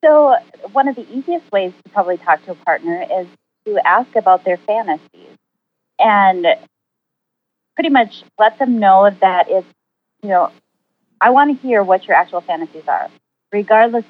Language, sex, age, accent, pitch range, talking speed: English, female, 30-49, American, 175-245 Hz, 160 wpm